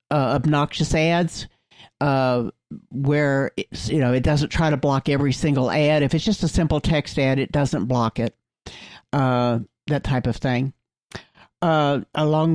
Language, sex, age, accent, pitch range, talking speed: English, male, 60-79, American, 130-150 Hz, 160 wpm